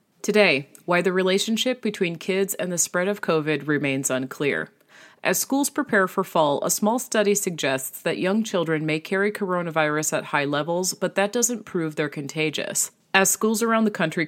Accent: American